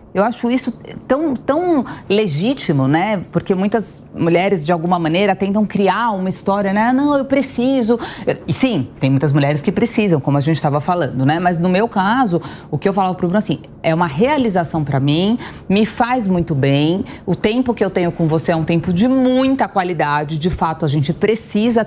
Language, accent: Portuguese, Brazilian